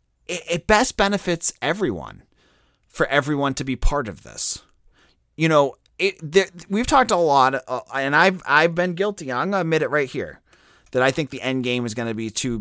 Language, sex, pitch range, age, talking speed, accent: English, male, 125-175 Hz, 30-49, 195 wpm, American